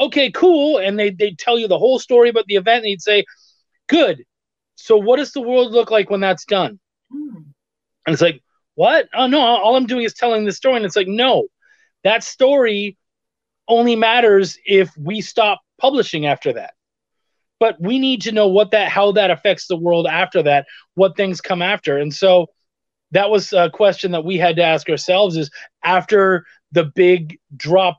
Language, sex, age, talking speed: English, male, 30-49, 190 wpm